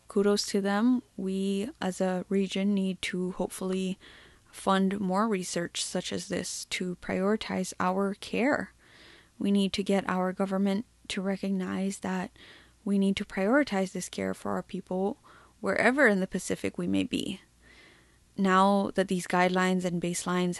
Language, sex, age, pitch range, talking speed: English, female, 10-29, 185-215 Hz, 150 wpm